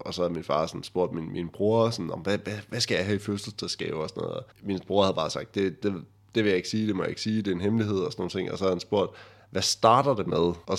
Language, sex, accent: Danish, male, native